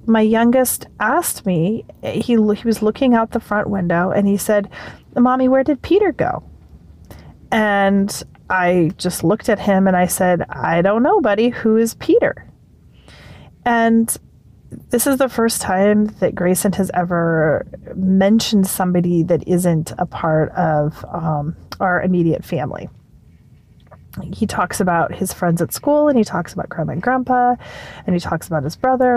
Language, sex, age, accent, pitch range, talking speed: English, female, 30-49, American, 170-230 Hz, 160 wpm